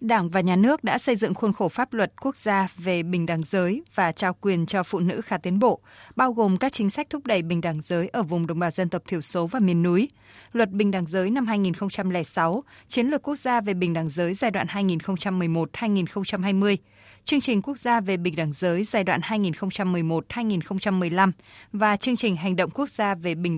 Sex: female